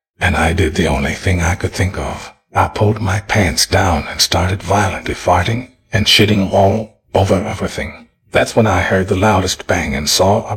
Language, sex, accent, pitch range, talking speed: English, male, American, 85-105 Hz, 195 wpm